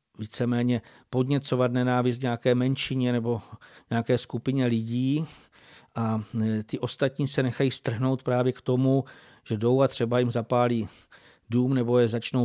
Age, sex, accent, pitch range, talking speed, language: 50-69, male, native, 120-140 Hz, 135 wpm, Czech